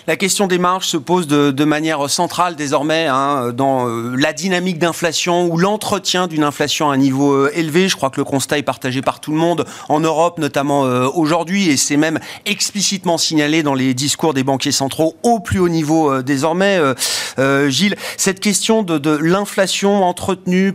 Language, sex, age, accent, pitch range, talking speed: French, male, 40-59, French, 150-185 Hz, 195 wpm